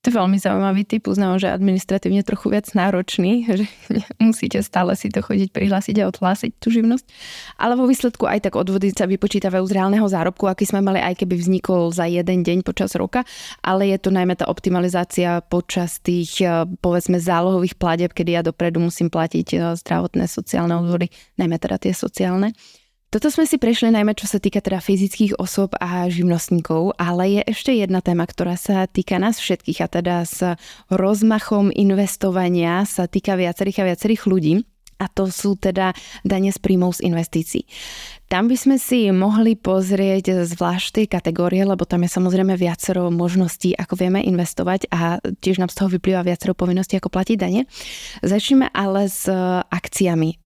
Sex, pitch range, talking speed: female, 175-200 Hz, 170 wpm